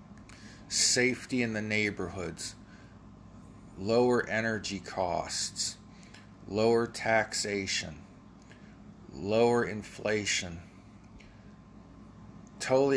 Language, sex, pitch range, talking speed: English, male, 95-115 Hz, 55 wpm